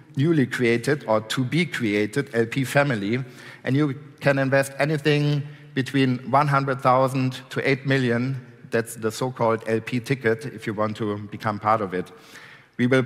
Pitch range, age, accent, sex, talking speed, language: 115-145 Hz, 50-69, German, male, 155 wpm, English